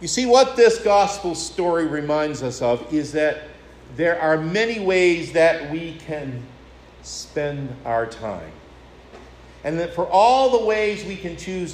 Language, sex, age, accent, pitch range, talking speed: English, male, 50-69, American, 120-185 Hz, 155 wpm